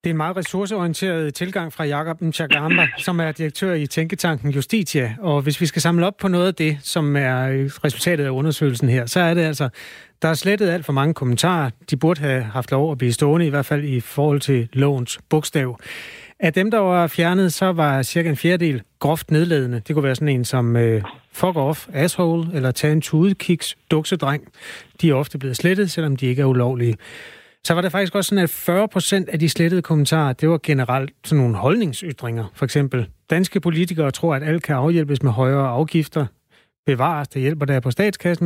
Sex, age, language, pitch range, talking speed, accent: male, 30-49, Danish, 135-170 Hz, 205 wpm, native